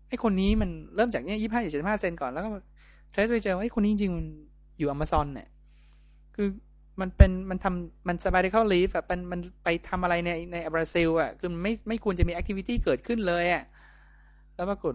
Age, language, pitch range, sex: 20-39, Thai, 140-190 Hz, male